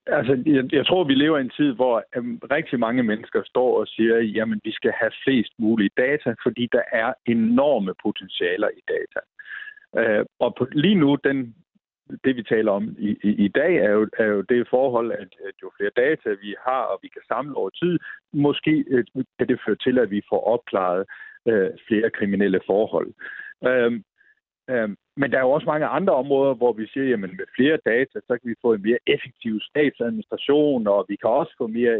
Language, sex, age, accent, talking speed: Danish, male, 60-79, native, 190 wpm